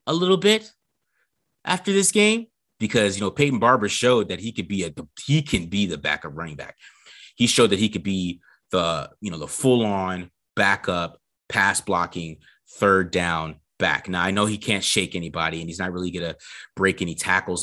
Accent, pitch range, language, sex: American, 90-105 Hz, English, male